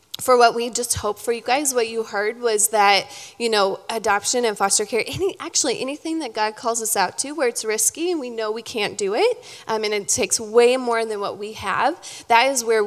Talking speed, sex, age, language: 240 wpm, female, 20-39, English